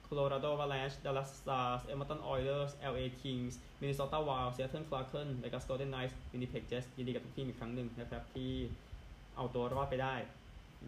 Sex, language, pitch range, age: male, Thai, 115-135 Hz, 20-39